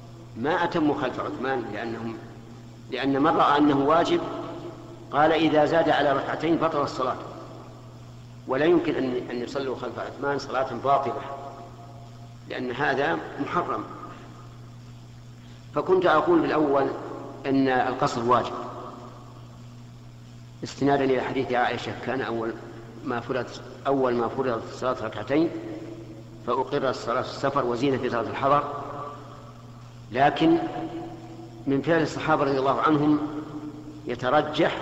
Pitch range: 120-140 Hz